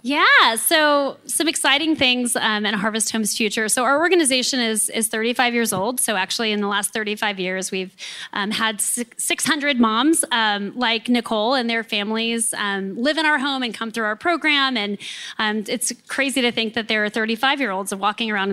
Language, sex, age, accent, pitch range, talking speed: English, female, 20-39, American, 215-275 Hz, 190 wpm